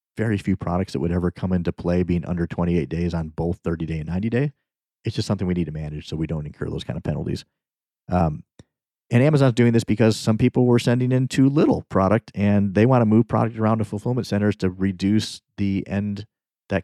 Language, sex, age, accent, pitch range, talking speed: English, male, 40-59, American, 90-110 Hz, 230 wpm